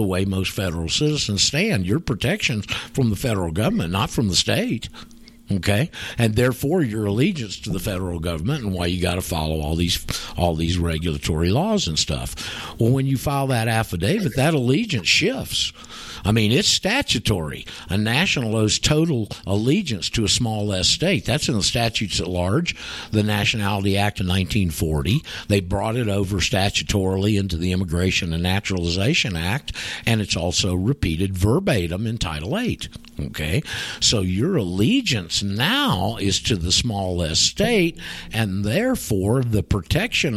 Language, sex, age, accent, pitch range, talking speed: English, male, 50-69, American, 90-120 Hz, 160 wpm